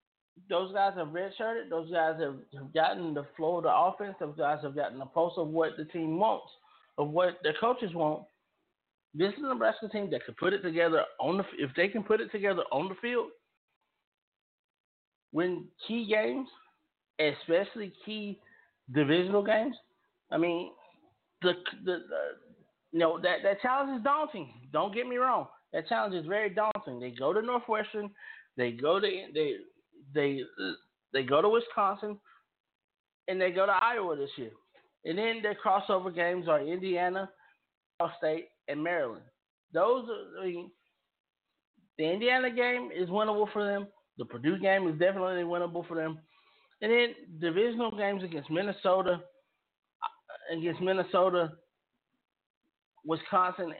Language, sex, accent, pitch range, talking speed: English, male, American, 165-215 Hz, 155 wpm